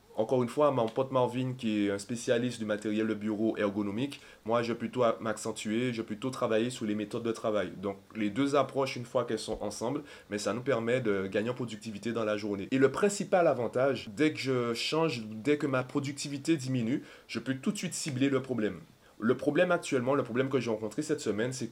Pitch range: 105-130 Hz